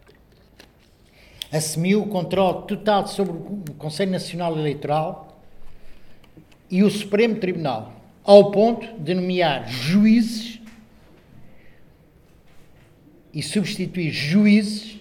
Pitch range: 150-190 Hz